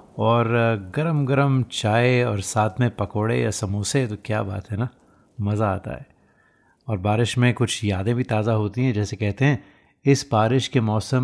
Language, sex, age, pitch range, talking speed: Hindi, male, 30-49, 105-120 Hz, 175 wpm